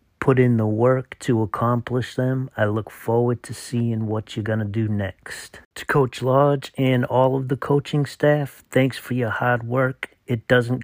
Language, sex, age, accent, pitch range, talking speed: English, male, 40-59, American, 110-125 Hz, 190 wpm